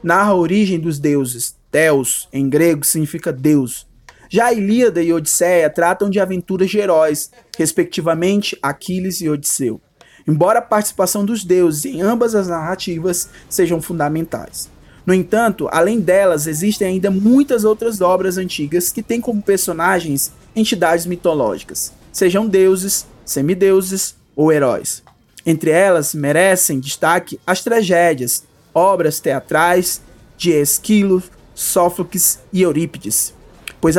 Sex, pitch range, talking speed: male, 160-200 Hz, 120 wpm